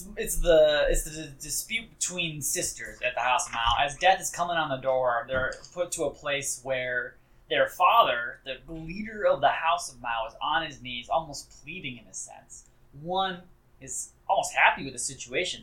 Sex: male